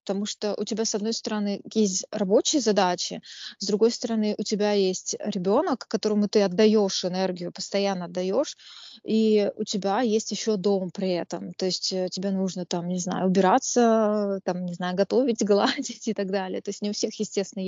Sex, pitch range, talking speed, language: female, 190-220 Hz, 180 wpm, Russian